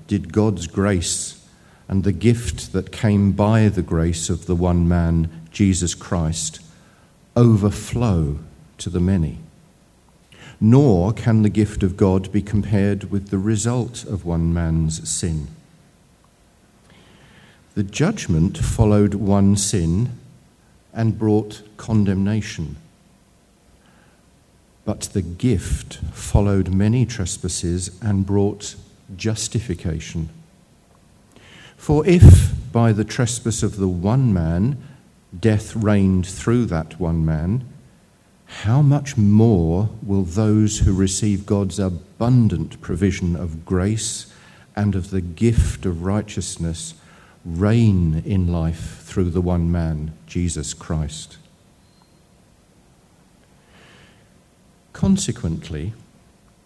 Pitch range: 85-110 Hz